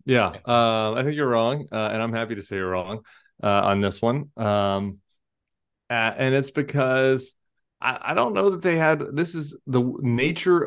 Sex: male